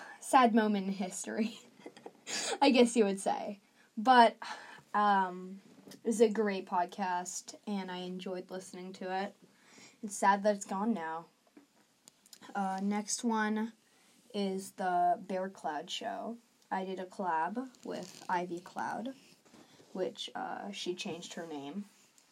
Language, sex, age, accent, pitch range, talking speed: English, female, 20-39, American, 185-235 Hz, 130 wpm